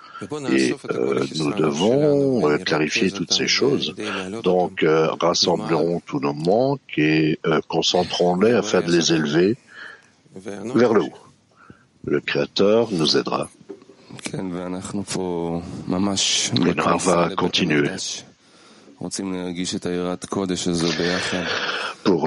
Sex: male